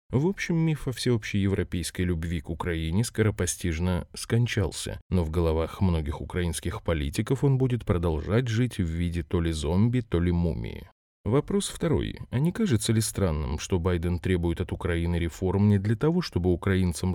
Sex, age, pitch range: male, 30-49, 85-115 Hz